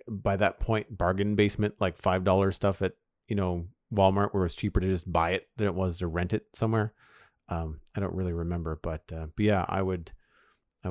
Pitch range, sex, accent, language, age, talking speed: 95-130 Hz, male, American, English, 40-59, 220 wpm